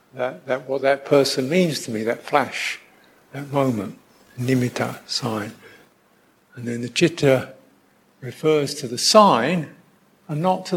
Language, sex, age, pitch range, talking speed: English, male, 60-79, 125-180 Hz, 140 wpm